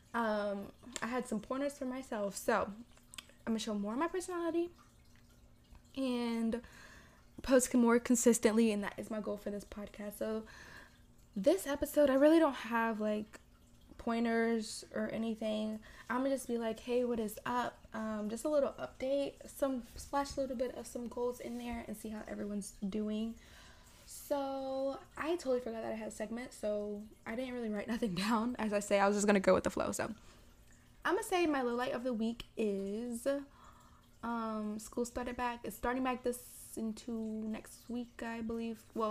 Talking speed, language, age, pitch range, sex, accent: 185 wpm, English, 20-39, 210-250 Hz, female, American